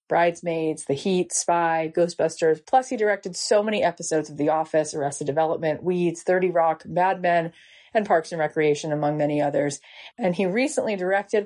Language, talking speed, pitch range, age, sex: English, 170 wpm, 160-185 Hz, 30-49, female